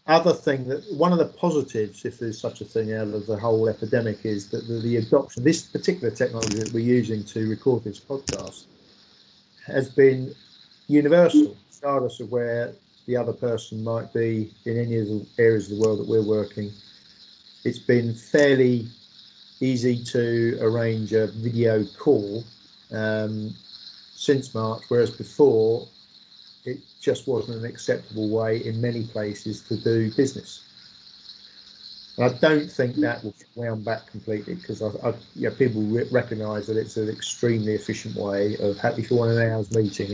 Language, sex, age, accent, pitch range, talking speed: English, male, 50-69, British, 110-125 Hz, 160 wpm